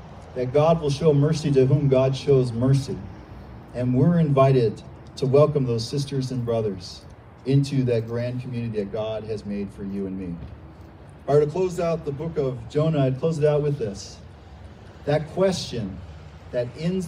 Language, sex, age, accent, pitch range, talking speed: English, male, 40-59, American, 120-155 Hz, 180 wpm